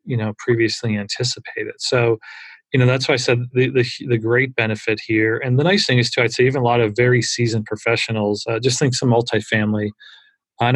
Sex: male